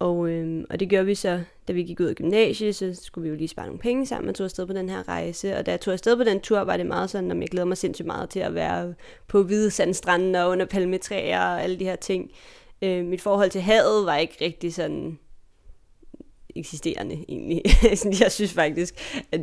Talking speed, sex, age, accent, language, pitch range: 235 wpm, female, 20-39, native, Danish, 175-200 Hz